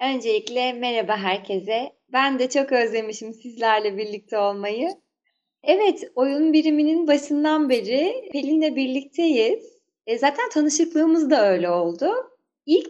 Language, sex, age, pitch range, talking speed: Turkish, female, 30-49, 215-310 Hz, 110 wpm